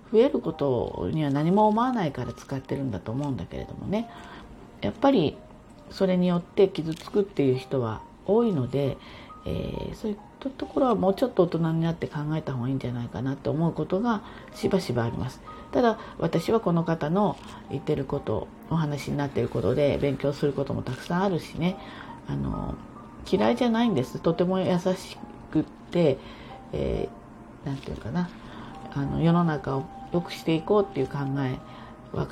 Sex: female